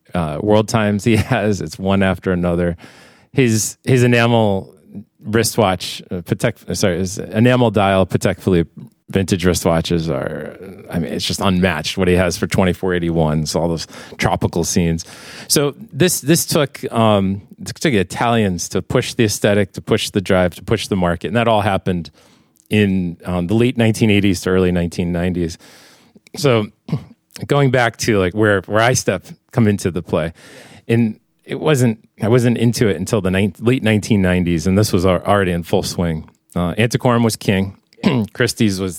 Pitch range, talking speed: 90-110 Hz, 175 wpm